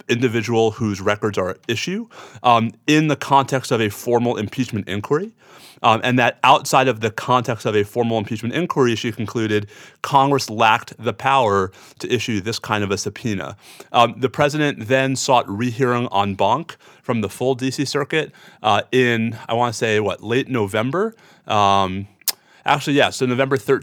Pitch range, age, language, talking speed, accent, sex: 110-135 Hz, 30-49, English, 170 wpm, American, male